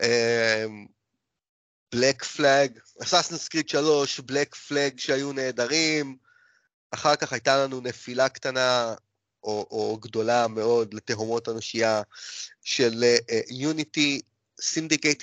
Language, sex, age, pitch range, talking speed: Hebrew, male, 30-49, 125-155 Hz, 100 wpm